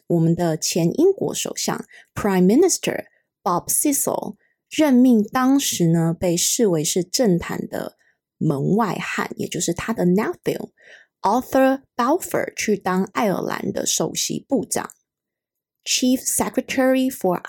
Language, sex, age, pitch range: Chinese, female, 20-39, 185-250 Hz